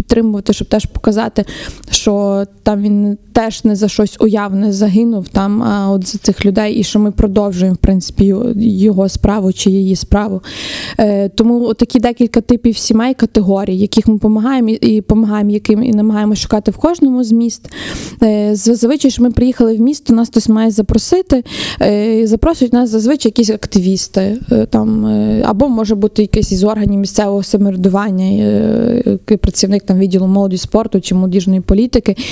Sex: female